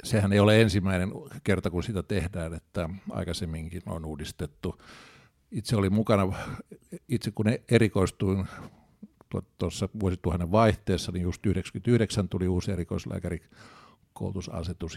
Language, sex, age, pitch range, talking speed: Finnish, male, 60-79, 95-115 Hz, 110 wpm